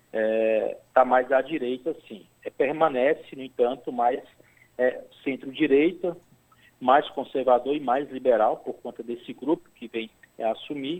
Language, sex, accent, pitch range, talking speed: Portuguese, male, Brazilian, 120-170 Hz, 120 wpm